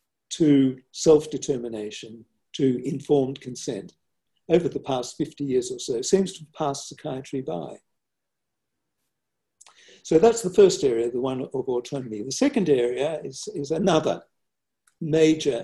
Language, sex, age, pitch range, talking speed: English, male, 60-79, 130-205 Hz, 125 wpm